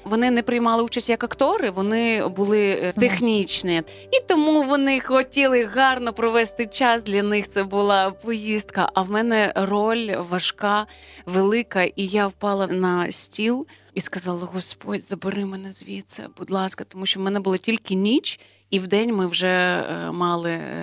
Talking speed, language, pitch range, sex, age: 155 wpm, Ukrainian, 185-235 Hz, female, 20-39